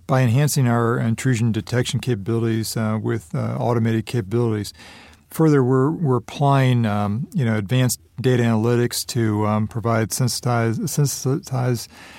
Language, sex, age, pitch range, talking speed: English, male, 40-59, 110-130 Hz, 130 wpm